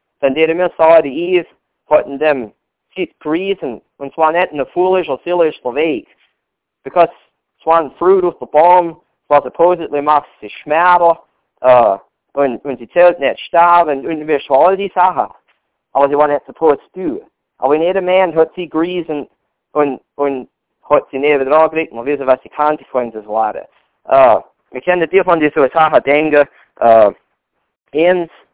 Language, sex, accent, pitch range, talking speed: English, male, American, 135-165 Hz, 165 wpm